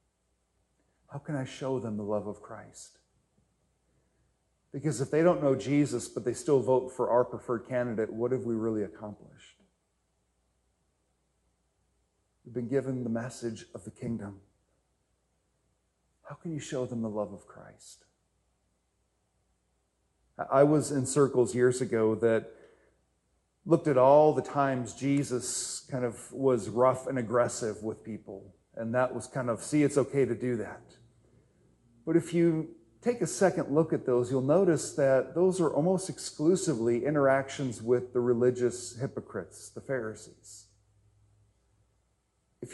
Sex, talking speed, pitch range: male, 140 wpm, 110-140 Hz